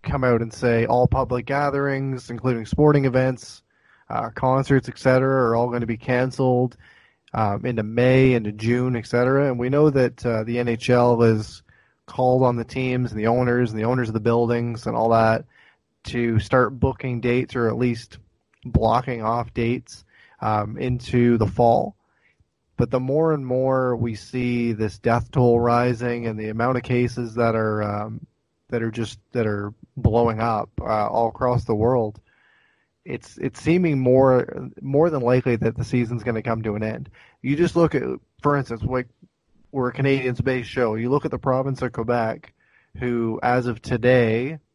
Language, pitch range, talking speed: English, 115-130 Hz, 180 wpm